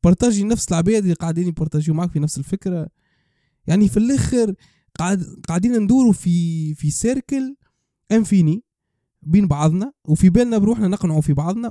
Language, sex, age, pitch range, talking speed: Arabic, male, 20-39, 155-210 Hz, 140 wpm